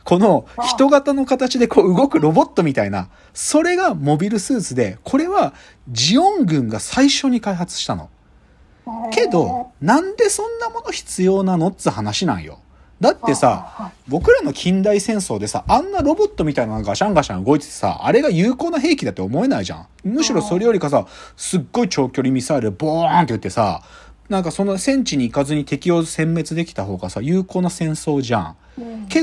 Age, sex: 40-59, male